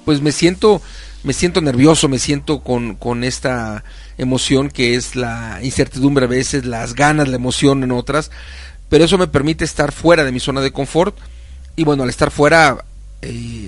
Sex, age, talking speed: male, 40-59, 180 wpm